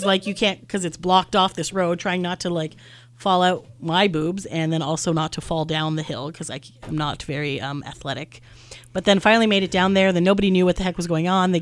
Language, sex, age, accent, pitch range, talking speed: English, female, 30-49, American, 155-200 Hz, 255 wpm